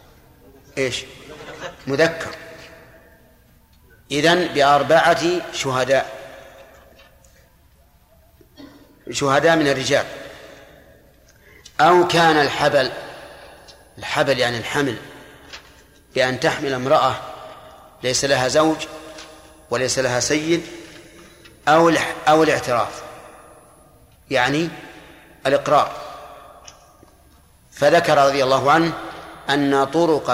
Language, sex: Arabic, male